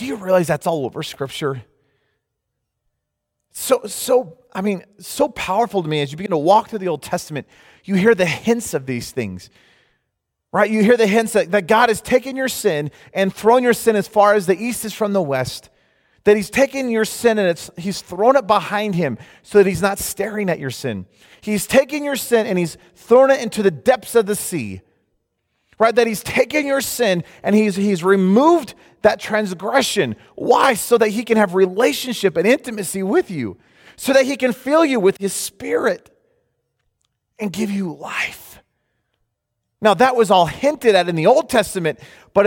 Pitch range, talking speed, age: 180-240 Hz, 195 wpm, 30-49